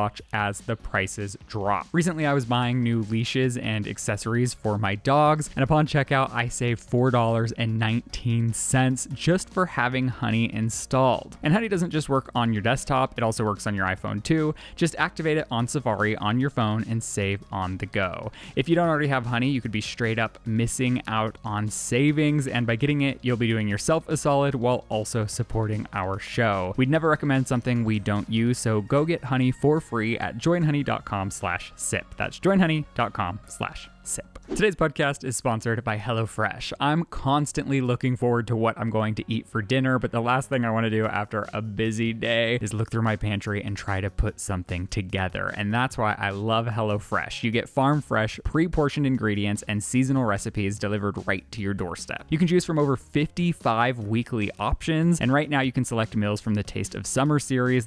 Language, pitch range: English, 105-135 Hz